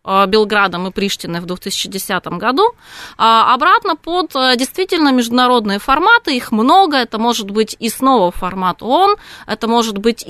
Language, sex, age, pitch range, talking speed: Russian, female, 20-39, 205-255 Hz, 135 wpm